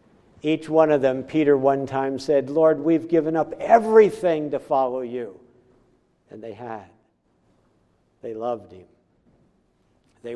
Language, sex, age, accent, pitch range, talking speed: English, male, 60-79, American, 130-170 Hz, 135 wpm